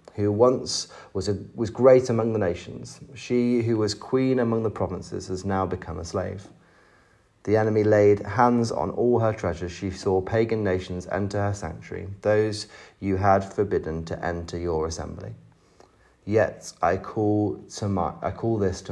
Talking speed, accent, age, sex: 170 wpm, British, 30-49, male